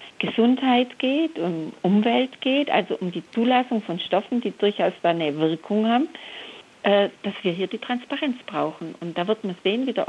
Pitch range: 180-235 Hz